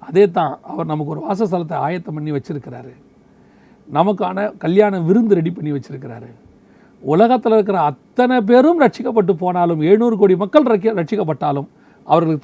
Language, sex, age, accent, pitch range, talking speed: Tamil, male, 40-59, native, 145-190 Hz, 125 wpm